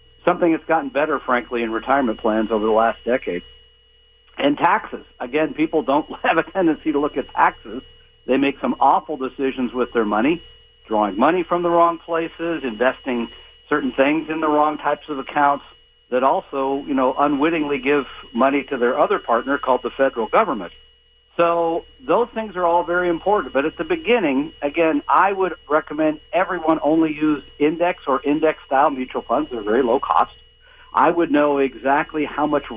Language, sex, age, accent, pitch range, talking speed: English, male, 50-69, American, 135-170 Hz, 175 wpm